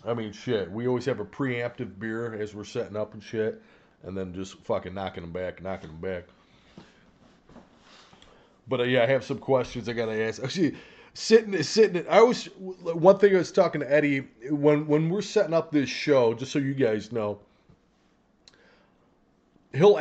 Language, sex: English, male